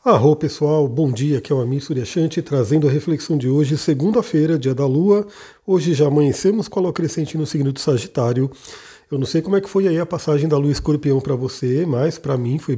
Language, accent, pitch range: Portuguese, Brazilian, 135-165 Hz